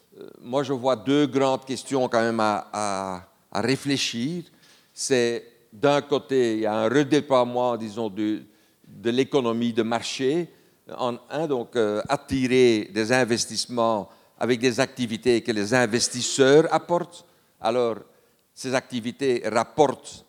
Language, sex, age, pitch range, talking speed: French, male, 60-79, 115-140 Hz, 130 wpm